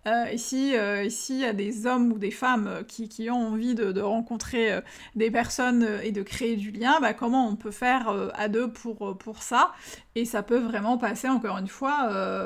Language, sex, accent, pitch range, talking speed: French, female, French, 215-260 Hz, 225 wpm